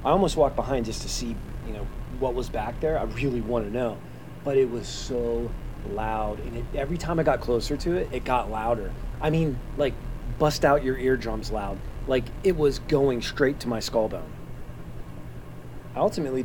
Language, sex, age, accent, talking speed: English, male, 30-49, American, 195 wpm